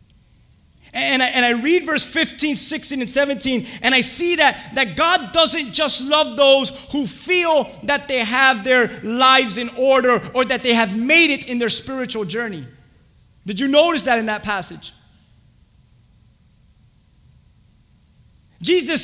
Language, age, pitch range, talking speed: English, 30-49, 235-300 Hz, 140 wpm